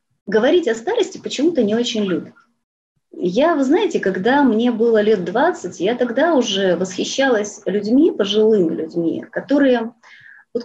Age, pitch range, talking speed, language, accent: 30-49, 185-270 Hz, 135 wpm, Russian, native